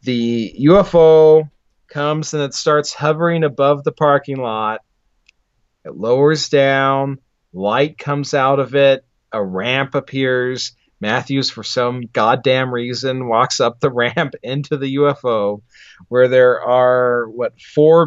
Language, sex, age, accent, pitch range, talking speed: English, male, 40-59, American, 110-145 Hz, 130 wpm